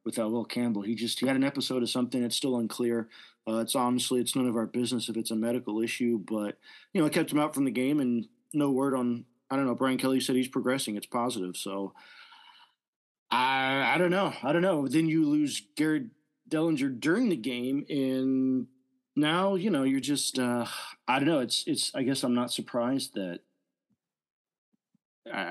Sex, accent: male, American